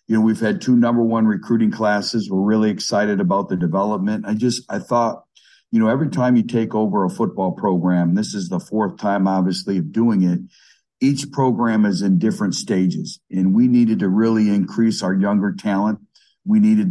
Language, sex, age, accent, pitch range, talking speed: English, male, 50-69, American, 95-125 Hz, 195 wpm